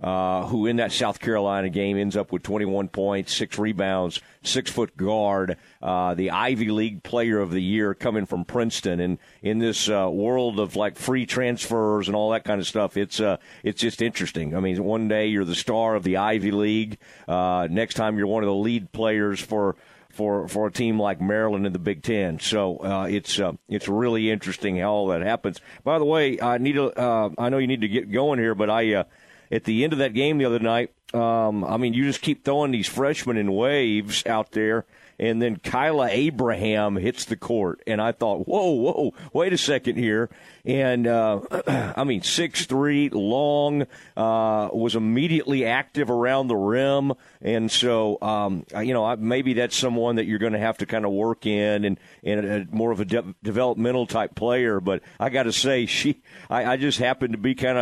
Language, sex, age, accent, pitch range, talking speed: English, male, 50-69, American, 105-125 Hz, 205 wpm